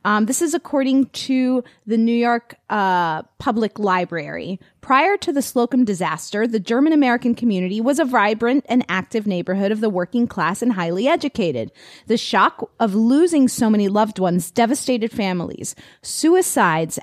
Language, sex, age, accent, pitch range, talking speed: English, female, 30-49, American, 185-250 Hz, 150 wpm